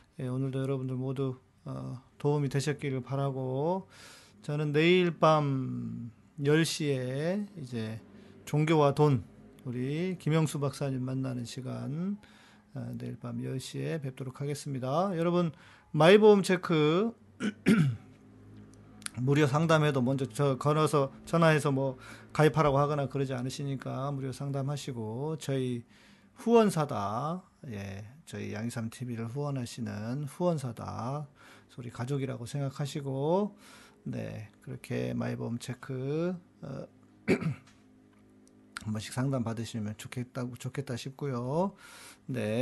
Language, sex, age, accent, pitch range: Korean, male, 40-59, native, 125-155 Hz